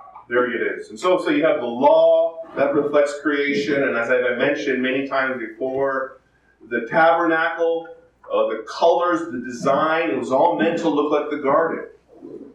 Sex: male